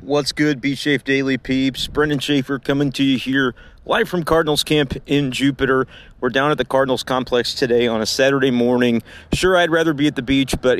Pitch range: 115-140 Hz